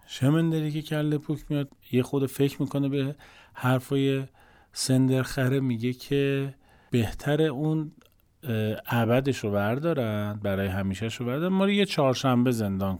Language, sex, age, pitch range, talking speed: Persian, male, 40-59, 105-145 Hz, 140 wpm